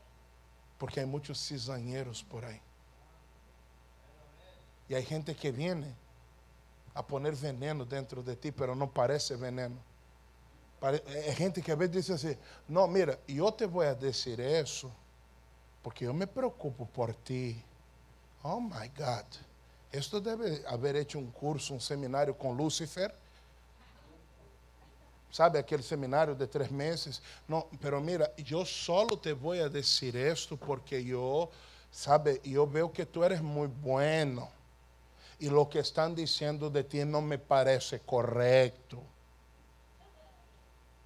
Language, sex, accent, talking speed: English, male, Brazilian, 135 wpm